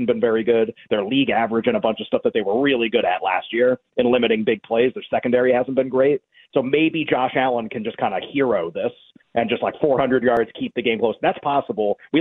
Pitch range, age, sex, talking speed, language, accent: 125-155 Hz, 30-49, male, 245 wpm, English, American